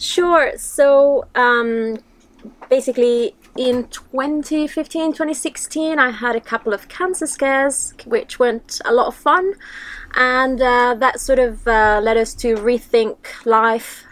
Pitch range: 205-265 Hz